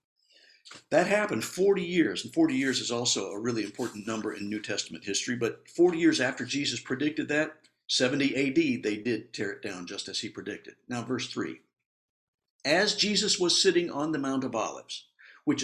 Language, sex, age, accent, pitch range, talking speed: English, male, 60-79, American, 115-175 Hz, 185 wpm